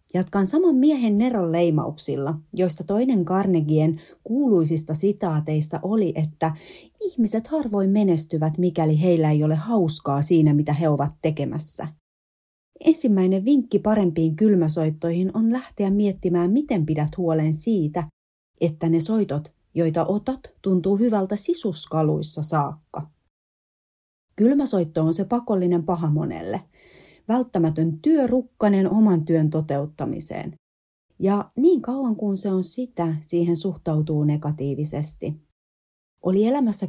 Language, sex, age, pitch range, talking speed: Finnish, female, 30-49, 155-210 Hz, 110 wpm